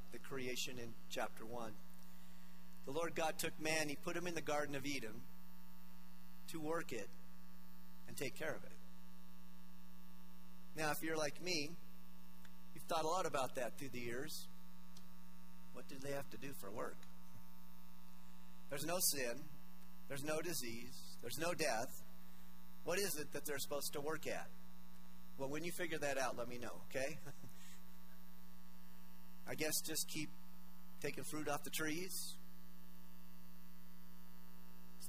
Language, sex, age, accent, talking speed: English, male, 40-59, American, 145 wpm